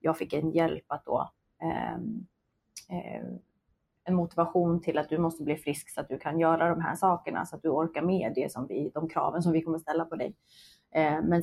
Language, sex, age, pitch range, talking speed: Swedish, female, 30-49, 155-185 Hz, 200 wpm